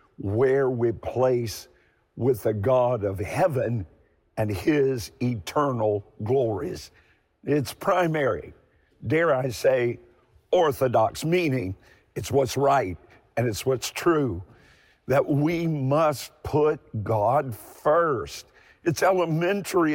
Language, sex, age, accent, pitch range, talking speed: English, male, 50-69, American, 120-155 Hz, 100 wpm